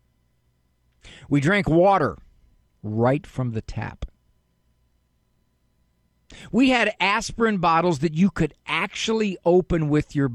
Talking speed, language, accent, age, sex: 105 wpm, English, American, 50-69, male